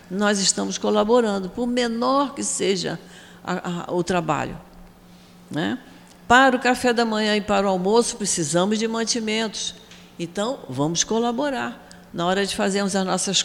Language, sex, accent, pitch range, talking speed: Portuguese, female, Brazilian, 195-240 Hz, 140 wpm